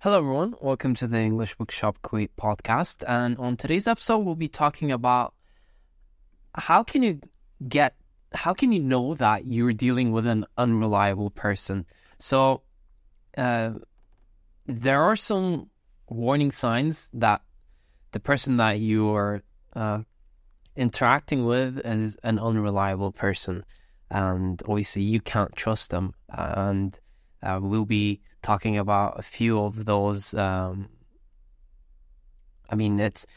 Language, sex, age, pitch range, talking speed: English, male, 10-29, 100-125 Hz, 130 wpm